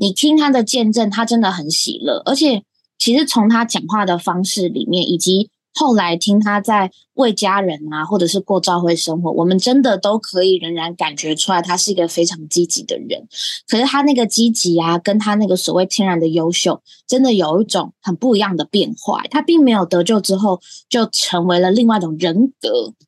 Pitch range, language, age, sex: 175-235 Hz, Chinese, 20-39, female